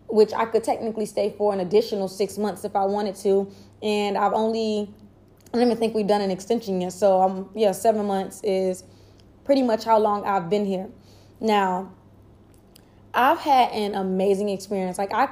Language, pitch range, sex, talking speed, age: Amharic, 195-235 Hz, female, 190 wpm, 20-39